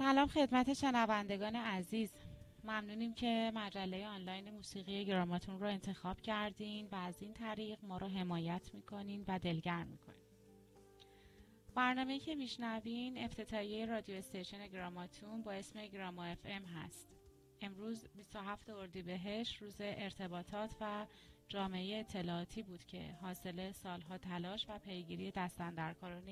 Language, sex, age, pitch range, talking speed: Persian, female, 30-49, 185-220 Hz, 115 wpm